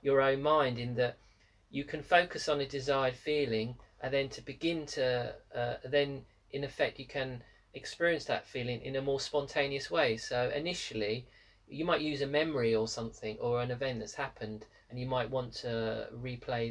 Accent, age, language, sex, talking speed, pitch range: British, 40-59, English, male, 185 wpm, 115-140 Hz